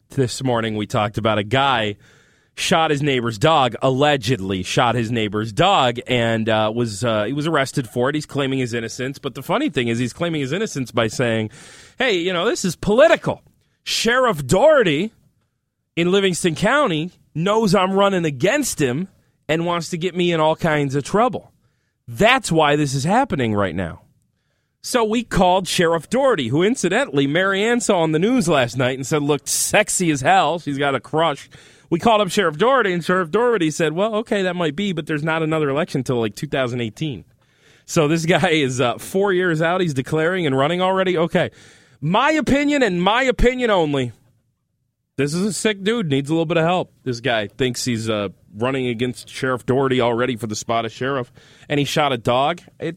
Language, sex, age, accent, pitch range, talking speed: English, male, 30-49, American, 125-180 Hz, 195 wpm